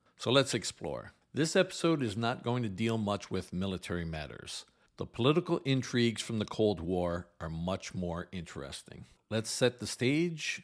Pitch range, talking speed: 90-125 Hz, 165 wpm